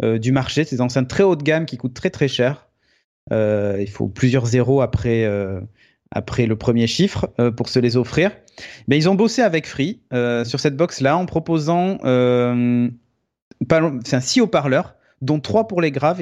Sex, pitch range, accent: male, 120-155 Hz, French